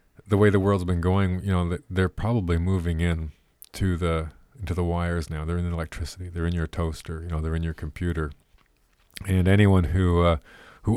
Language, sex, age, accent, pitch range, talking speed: English, male, 40-59, American, 80-90 Hz, 200 wpm